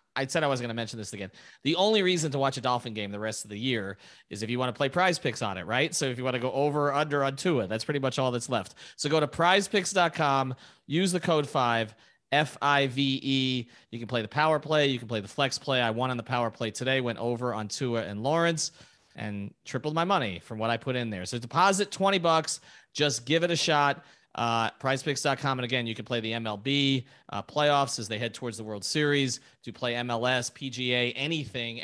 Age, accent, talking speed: 30-49, American, 245 wpm